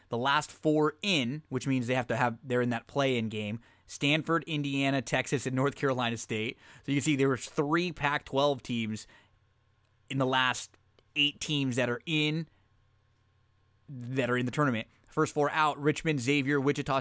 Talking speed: 180 wpm